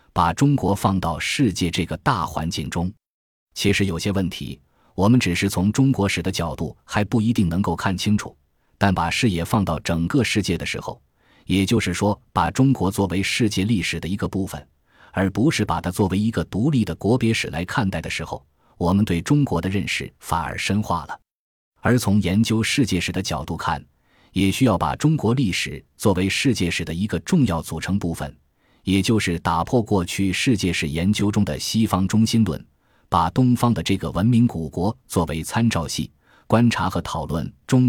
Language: Chinese